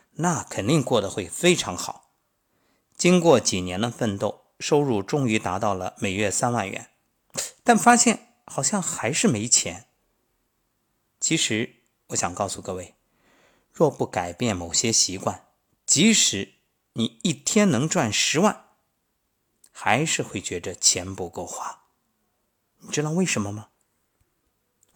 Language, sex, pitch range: Chinese, male, 100-135 Hz